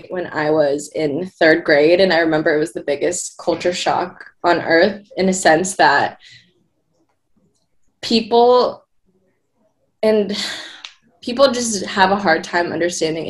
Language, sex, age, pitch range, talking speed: English, female, 20-39, 165-190 Hz, 135 wpm